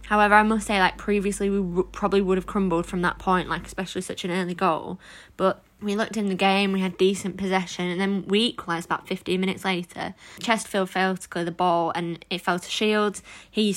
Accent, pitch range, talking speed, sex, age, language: British, 175-200 Hz, 220 wpm, female, 20-39, English